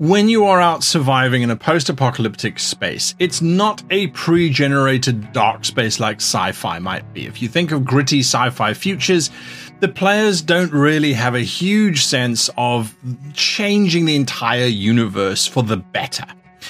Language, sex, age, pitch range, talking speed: English, male, 30-49, 110-155 Hz, 150 wpm